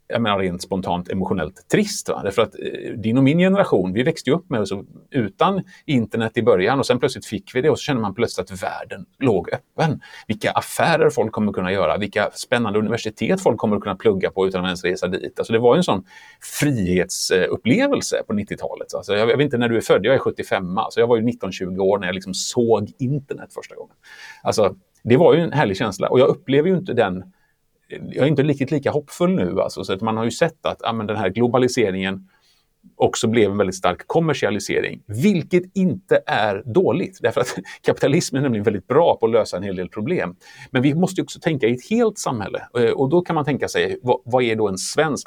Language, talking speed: Swedish, 225 wpm